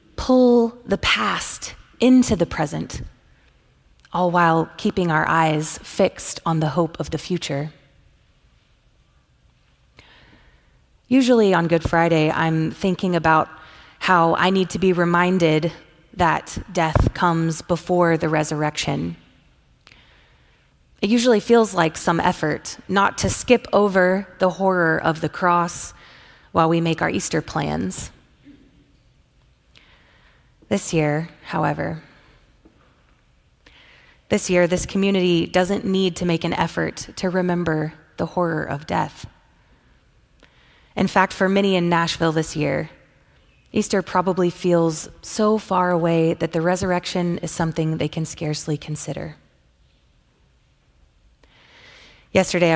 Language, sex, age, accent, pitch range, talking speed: English, female, 30-49, American, 155-185 Hz, 115 wpm